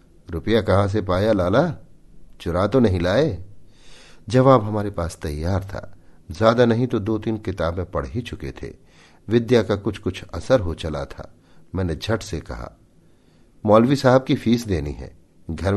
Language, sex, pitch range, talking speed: Hindi, male, 85-105 Hz, 165 wpm